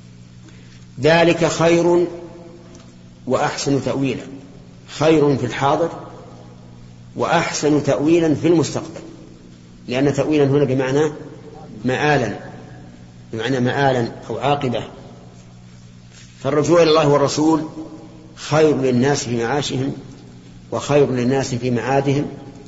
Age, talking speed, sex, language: 50-69, 85 wpm, male, Arabic